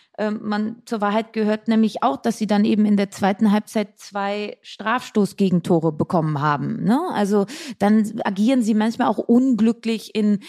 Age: 20-39